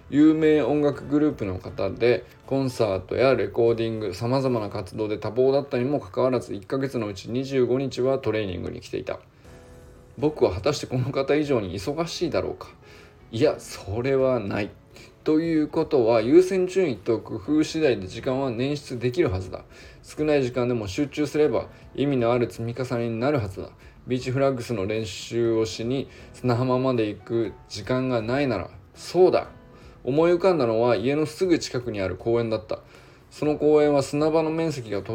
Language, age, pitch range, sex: Japanese, 20-39, 115-145 Hz, male